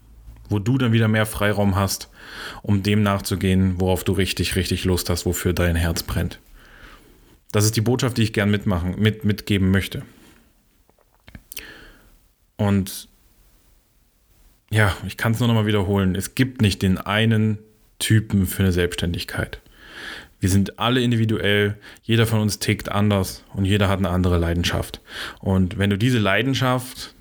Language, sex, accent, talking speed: German, male, German, 150 wpm